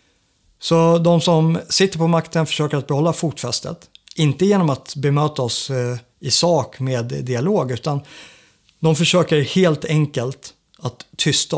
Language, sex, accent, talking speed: Swedish, male, native, 135 wpm